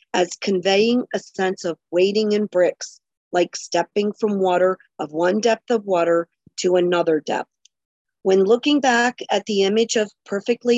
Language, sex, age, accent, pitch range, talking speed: English, female, 40-59, American, 180-220 Hz, 155 wpm